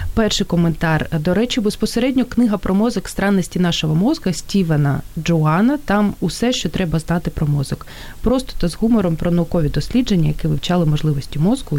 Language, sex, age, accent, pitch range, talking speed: Ukrainian, female, 30-49, native, 155-200 Hz, 160 wpm